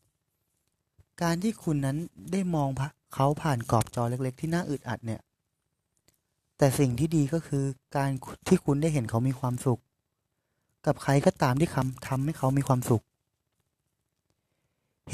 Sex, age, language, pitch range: male, 20-39, Thai, 120-145 Hz